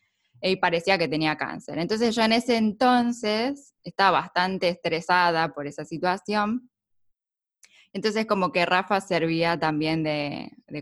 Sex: female